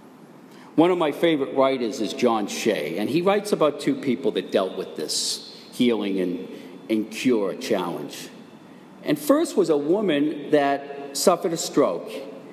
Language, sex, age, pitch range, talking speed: English, male, 50-69, 125-190 Hz, 155 wpm